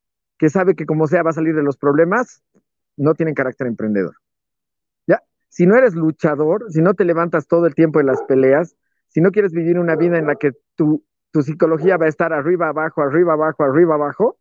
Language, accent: Spanish, Mexican